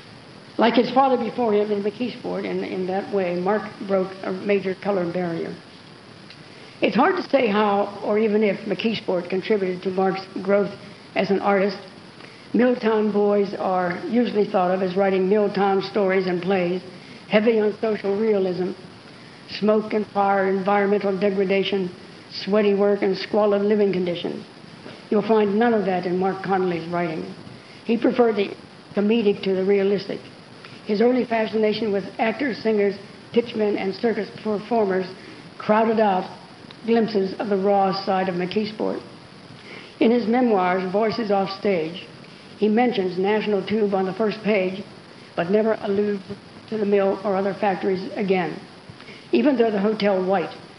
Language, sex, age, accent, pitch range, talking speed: English, female, 60-79, American, 190-215 Hz, 145 wpm